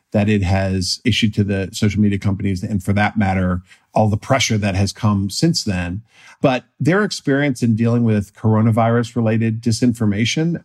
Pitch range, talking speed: 105-130 Hz, 165 wpm